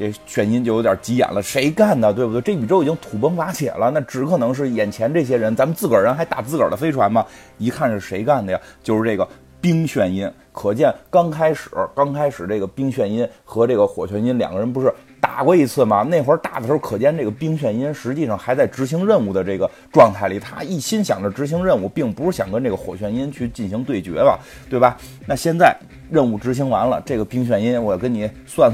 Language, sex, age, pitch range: Chinese, male, 30-49, 105-140 Hz